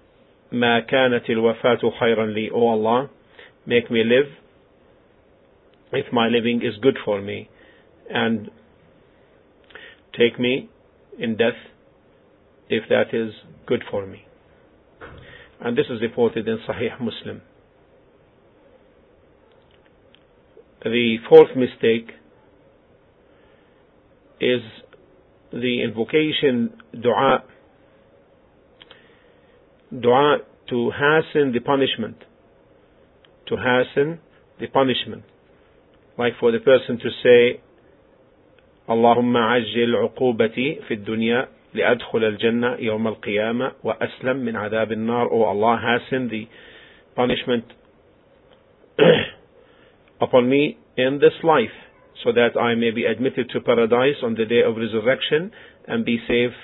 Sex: male